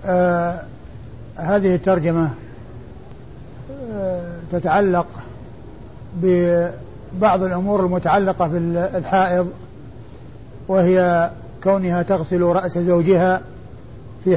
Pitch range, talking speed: 125-185 Hz, 60 wpm